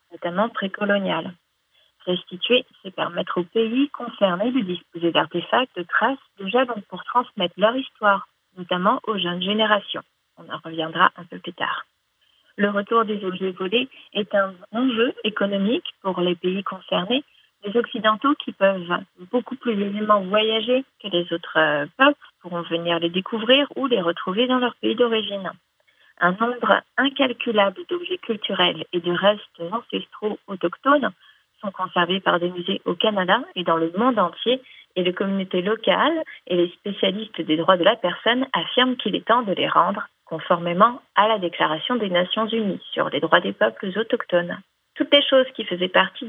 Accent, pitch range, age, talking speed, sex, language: French, 185-245 Hz, 40-59, 165 wpm, female, French